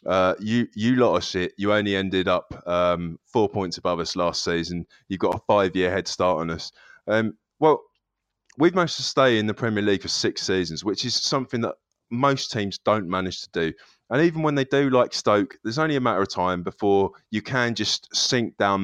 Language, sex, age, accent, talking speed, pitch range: English, male, 20-39, British, 225 wpm, 95-135 Hz